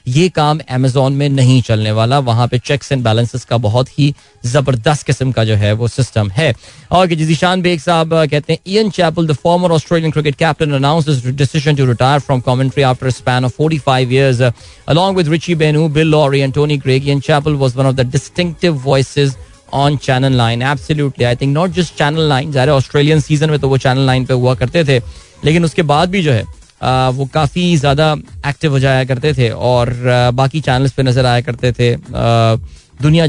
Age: 20-39